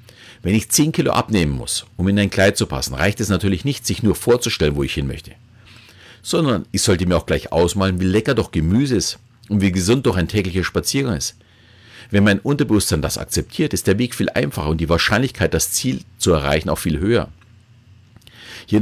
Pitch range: 90-115 Hz